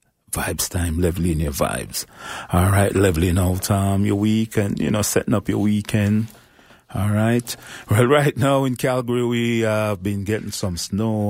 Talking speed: 180 wpm